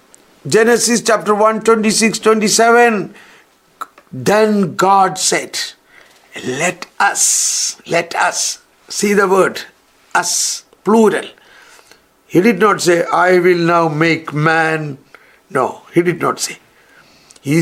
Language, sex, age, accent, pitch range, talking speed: English, male, 60-79, Indian, 185-235 Hz, 110 wpm